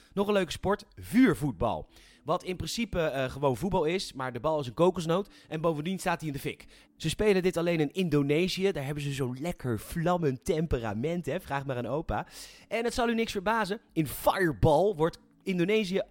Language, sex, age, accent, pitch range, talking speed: Dutch, male, 30-49, Dutch, 135-185 Hz, 200 wpm